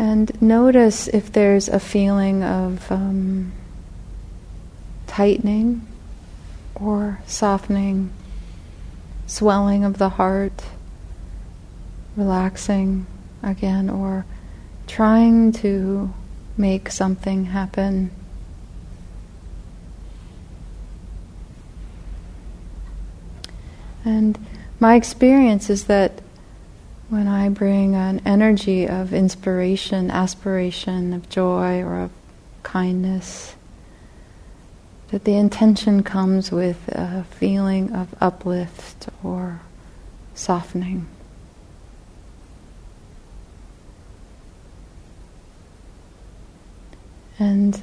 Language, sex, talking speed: English, female, 65 wpm